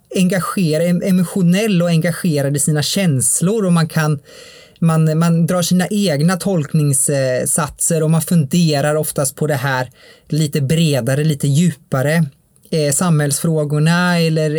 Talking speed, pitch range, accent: 125 wpm, 145-180 Hz, Norwegian